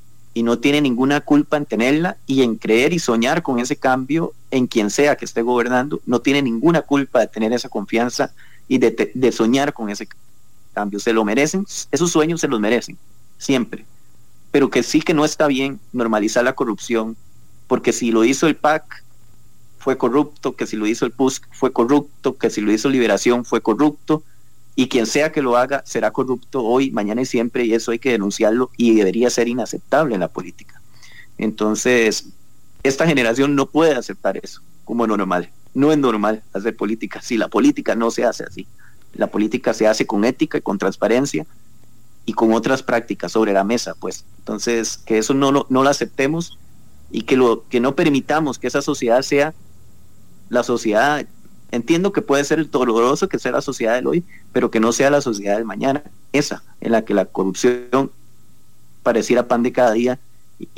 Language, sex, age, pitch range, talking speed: English, male, 30-49, 110-140 Hz, 190 wpm